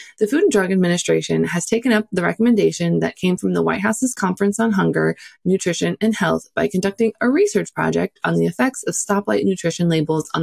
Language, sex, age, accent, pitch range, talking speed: English, female, 20-39, American, 155-220 Hz, 200 wpm